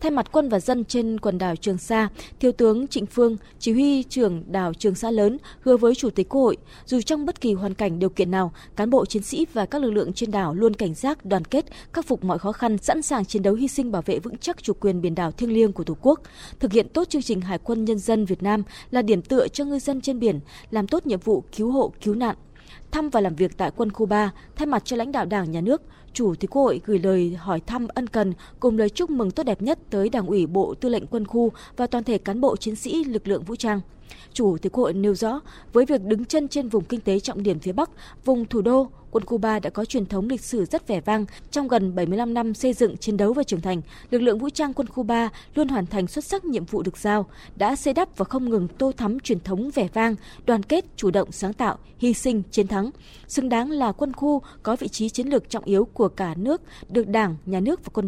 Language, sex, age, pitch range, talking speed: Vietnamese, female, 20-39, 200-255 Hz, 265 wpm